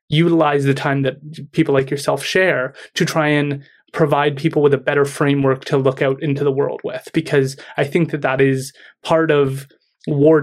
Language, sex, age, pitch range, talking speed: English, male, 20-39, 140-165 Hz, 190 wpm